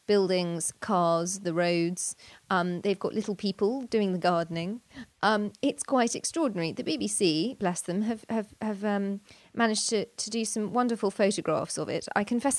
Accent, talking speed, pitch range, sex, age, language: British, 165 wpm, 175-235 Hz, female, 30-49, English